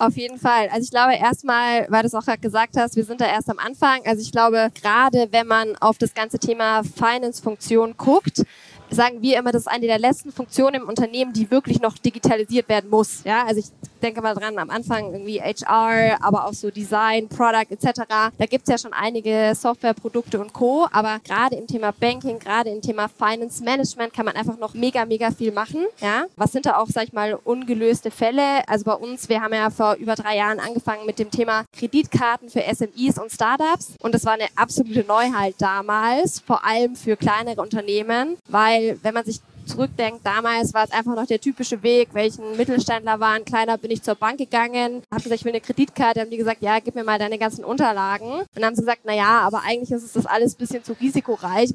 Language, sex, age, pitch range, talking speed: German, female, 10-29, 220-240 Hz, 215 wpm